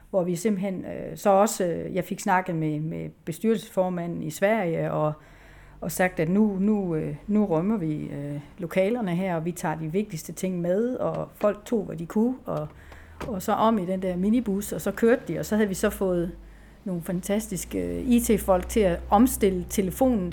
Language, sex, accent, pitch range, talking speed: Danish, female, native, 175-220 Hz, 185 wpm